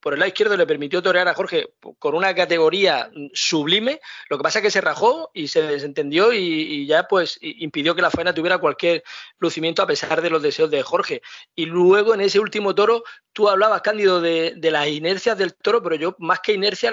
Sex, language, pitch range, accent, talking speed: male, Spanish, 160-230 Hz, Spanish, 215 wpm